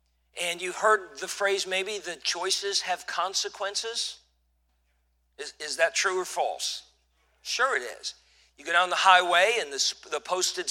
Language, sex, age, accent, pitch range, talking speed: English, male, 50-69, American, 155-200 Hz, 155 wpm